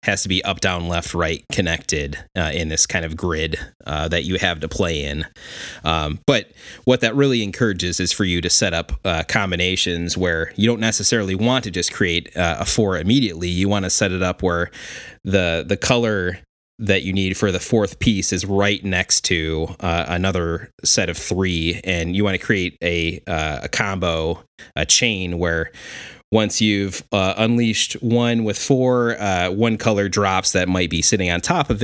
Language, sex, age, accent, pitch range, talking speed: English, male, 30-49, American, 85-105 Hz, 195 wpm